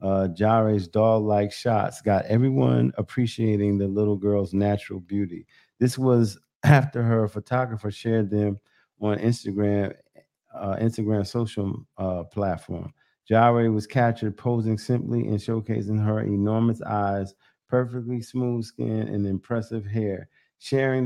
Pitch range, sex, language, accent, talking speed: 105-120 Hz, male, English, American, 125 wpm